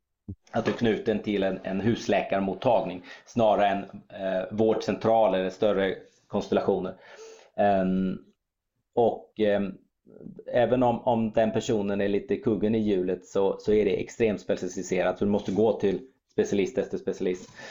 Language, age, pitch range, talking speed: Swedish, 30-49, 95-110 Hz, 140 wpm